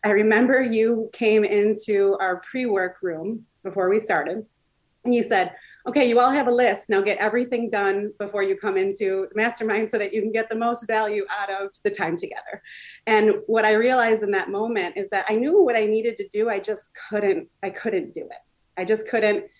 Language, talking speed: English, 210 wpm